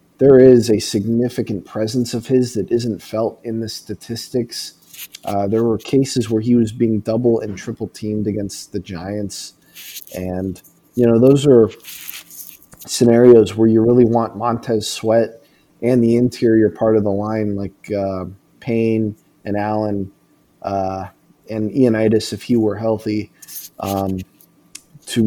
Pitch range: 105-125 Hz